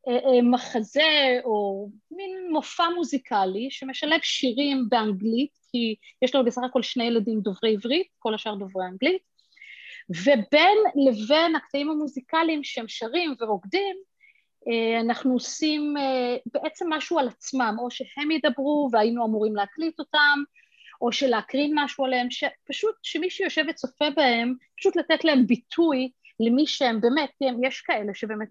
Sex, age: female, 30-49